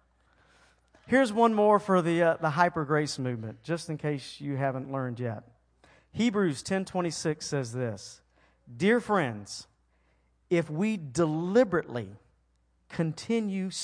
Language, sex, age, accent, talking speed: English, male, 40-59, American, 115 wpm